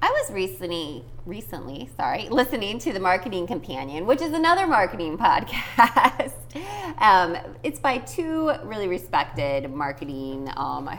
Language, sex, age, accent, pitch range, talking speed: English, female, 20-39, American, 135-185 Hz, 130 wpm